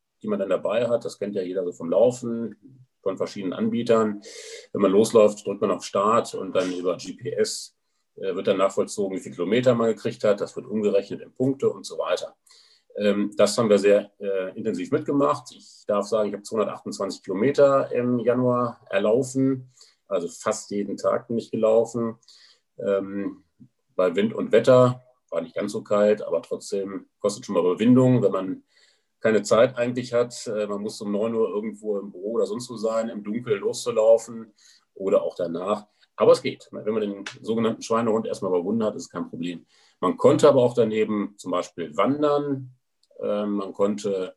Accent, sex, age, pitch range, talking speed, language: German, male, 40-59, 105-130 Hz, 175 wpm, German